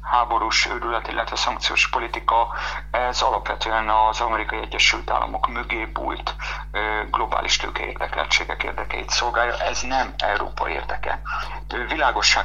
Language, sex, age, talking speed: Hungarian, male, 50-69, 105 wpm